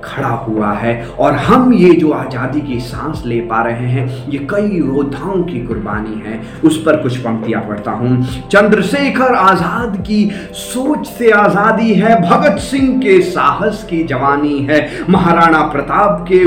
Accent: native